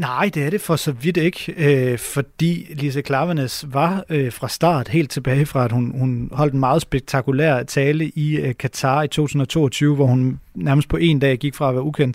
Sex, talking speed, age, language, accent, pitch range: male, 210 wpm, 30-49, Danish, native, 135-155 Hz